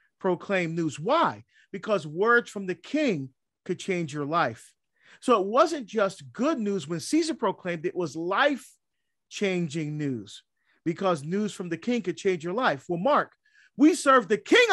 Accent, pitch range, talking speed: American, 175-255 Hz, 165 wpm